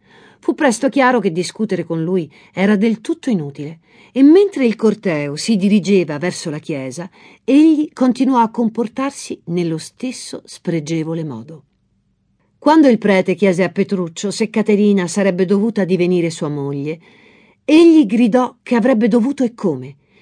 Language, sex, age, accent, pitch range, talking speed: Italian, female, 50-69, native, 180-255 Hz, 140 wpm